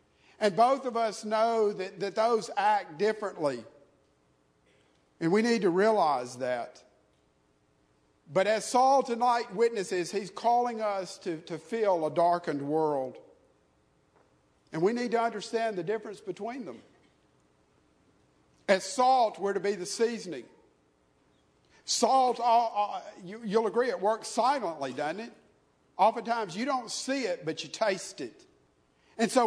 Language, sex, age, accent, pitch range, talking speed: English, male, 50-69, American, 165-225 Hz, 140 wpm